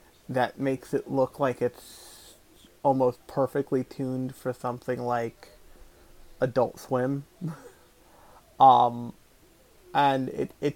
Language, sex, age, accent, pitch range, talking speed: English, male, 30-49, American, 120-135 Hz, 100 wpm